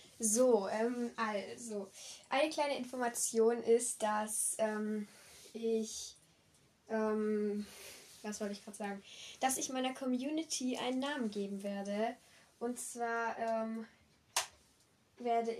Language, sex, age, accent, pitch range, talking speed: German, female, 10-29, German, 215-245 Hz, 110 wpm